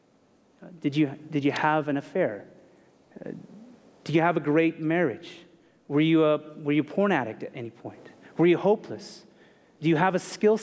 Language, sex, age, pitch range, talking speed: English, male, 30-49, 140-185 Hz, 175 wpm